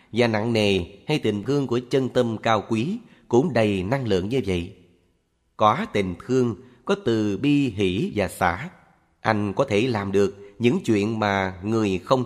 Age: 30-49